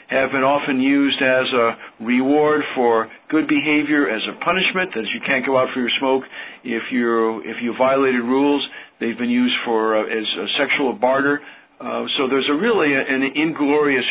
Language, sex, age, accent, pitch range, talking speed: English, male, 50-69, American, 130-160 Hz, 190 wpm